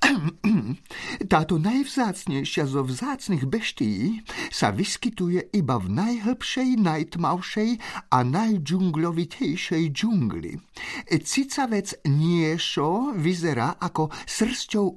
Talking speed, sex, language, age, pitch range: 80 wpm, male, Slovak, 50-69, 180-245 Hz